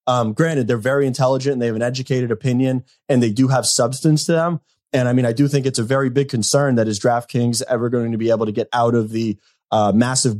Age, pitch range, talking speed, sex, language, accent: 20-39, 115-140 Hz, 255 wpm, male, English, American